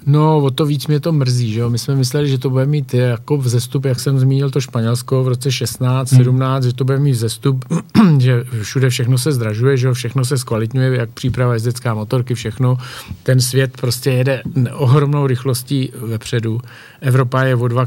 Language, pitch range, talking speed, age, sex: Czech, 120-135 Hz, 195 wpm, 50-69, male